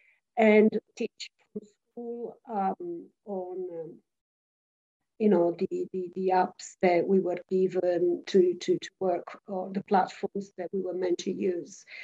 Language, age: English, 50-69